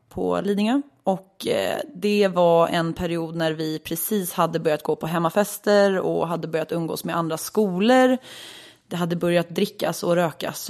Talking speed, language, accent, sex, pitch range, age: 165 wpm, English, Swedish, female, 165-215 Hz, 30-49